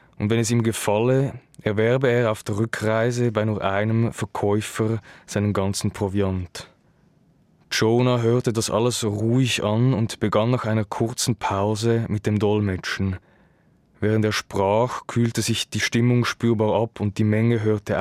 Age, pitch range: 20-39, 105-115 Hz